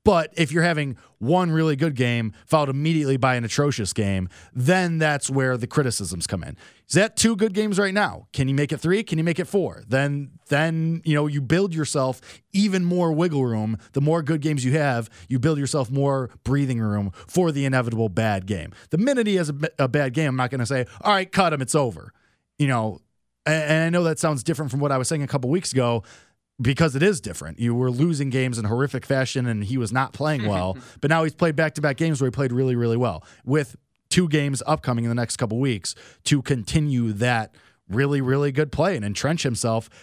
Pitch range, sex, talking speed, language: 110-155 Hz, male, 225 wpm, English